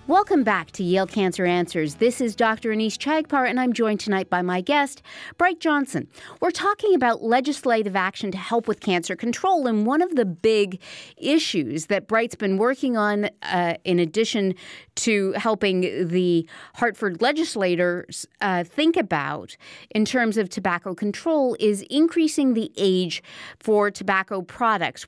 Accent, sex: American, female